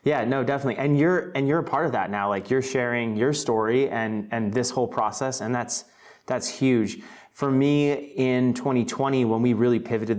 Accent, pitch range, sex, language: American, 115-135 Hz, male, English